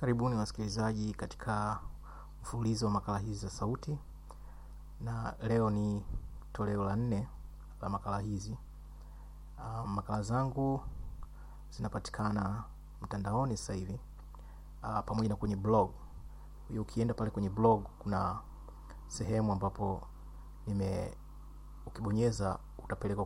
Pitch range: 95-110 Hz